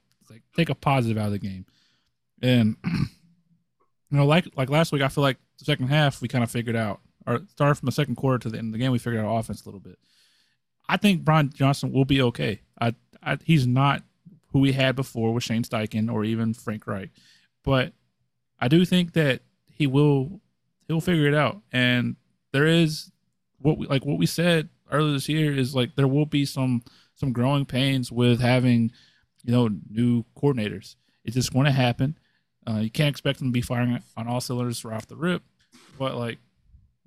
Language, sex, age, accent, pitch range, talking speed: English, male, 20-39, American, 115-145 Hz, 210 wpm